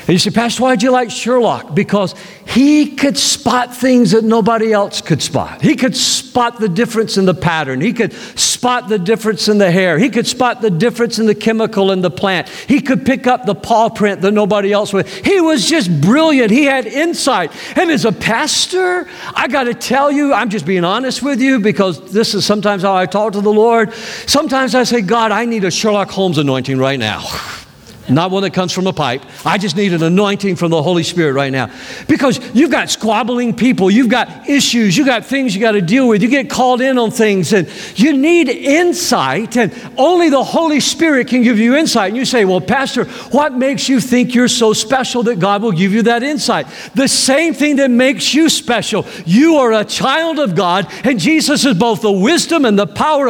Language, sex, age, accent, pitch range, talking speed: English, male, 50-69, American, 200-265 Hz, 220 wpm